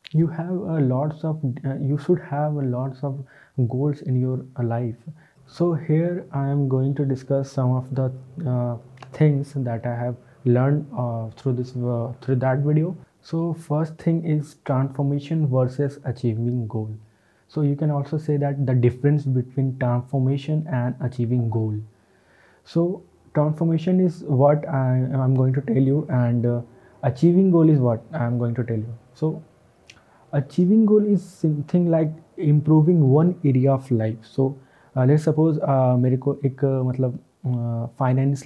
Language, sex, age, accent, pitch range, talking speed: Hindi, male, 20-39, native, 125-150 Hz, 160 wpm